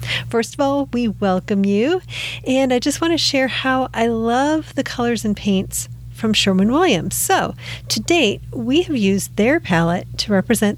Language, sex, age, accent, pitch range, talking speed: English, female, 50-69, American, 155-235 Hz, 175 wpm